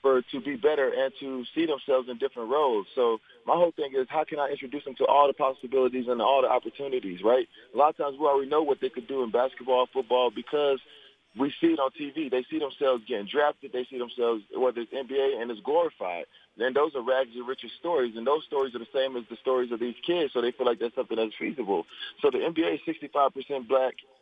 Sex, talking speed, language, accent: male, 245 wpm, English, American